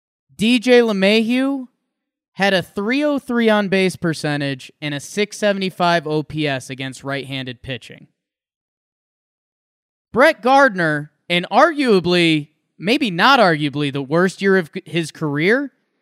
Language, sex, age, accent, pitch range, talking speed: English, male, 20-39, American, 165-255 Hz, 110 wpm